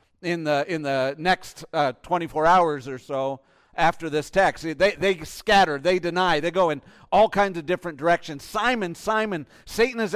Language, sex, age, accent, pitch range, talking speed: English, male, 50-69, American, 140-200 Hz, 175 wpm